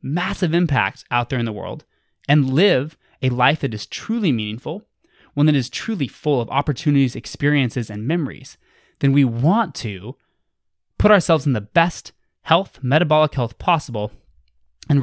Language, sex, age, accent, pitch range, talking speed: English, male, 20-39, American, 120-155 Hz, 155 wpm